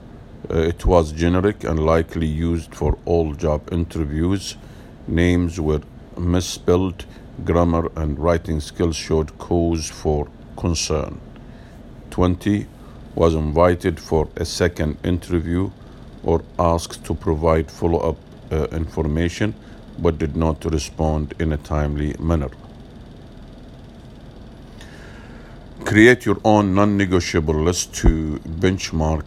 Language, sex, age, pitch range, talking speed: English, male, 50-69, 80-90 Hz, 100 wpm